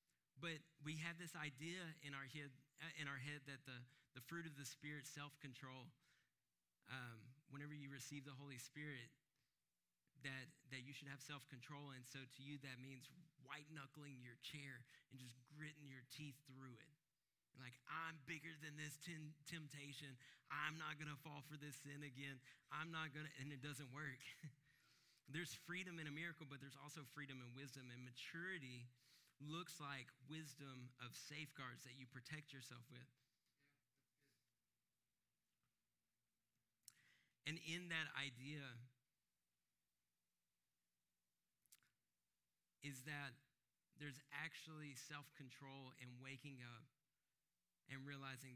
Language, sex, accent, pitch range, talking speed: English, male, American, 125-150 Hz, 135 wpm